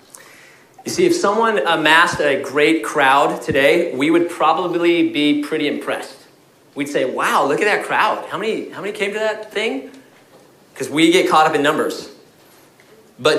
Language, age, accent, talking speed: English, 30-49, American, 170 wpm